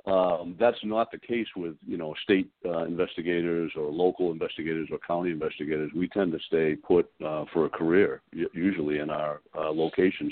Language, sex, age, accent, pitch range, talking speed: English, male, 50-69, American, 80-95 Hz, 180 wpm